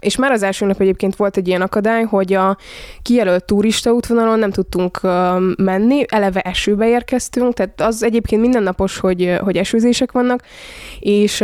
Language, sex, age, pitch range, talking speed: Hungarian, female, 20-39, 185-220 Hz, 155 wpm